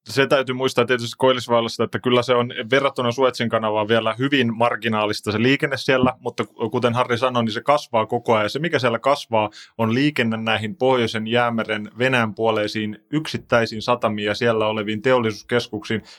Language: Finnish